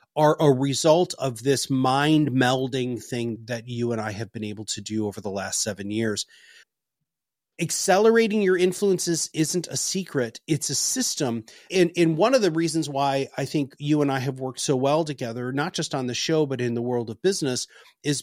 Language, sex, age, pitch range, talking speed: English, male, 30-49, 125-170 Hz, 200 wpm